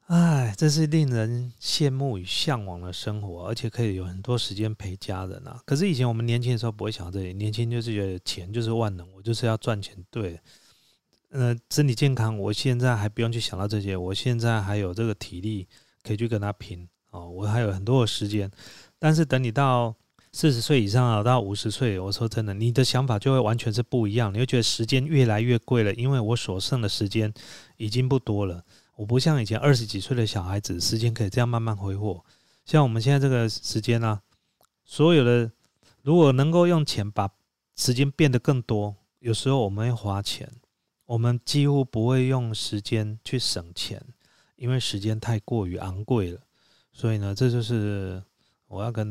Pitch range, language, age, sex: 105-125 Hz, Chinese, 30-49, male